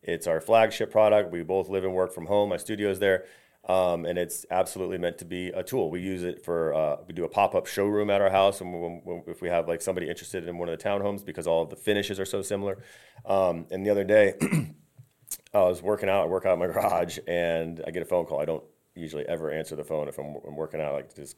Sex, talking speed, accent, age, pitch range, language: male, 265 wpm, American, 30-49, 95-120 Hz, English